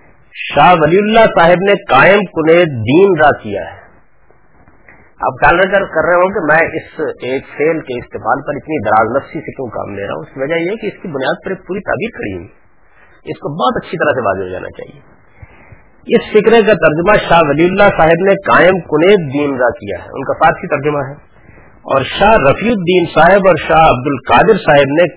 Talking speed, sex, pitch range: 200 wpm, male, 140-205 Hz